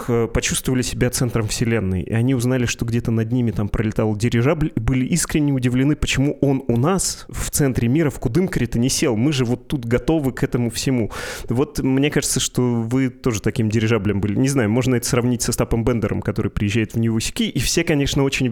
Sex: male